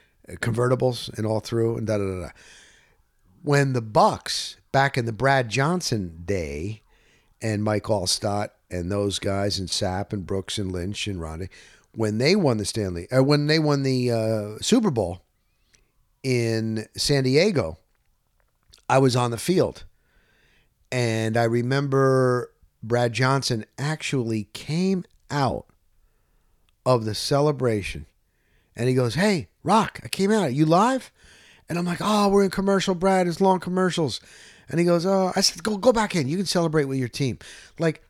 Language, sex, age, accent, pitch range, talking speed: English, male, 50-69, American, 100-150 Hz, 160 wpm